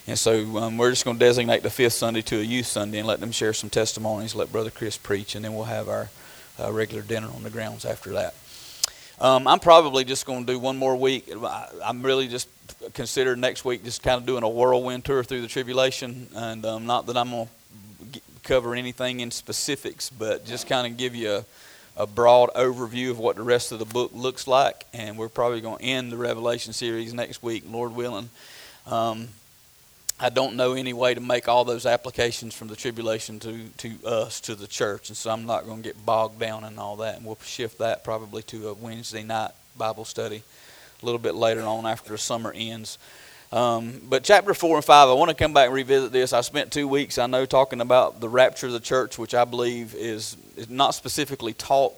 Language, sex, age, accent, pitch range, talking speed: English, male, 40-59, American, 110-125 Hz, 225 wpm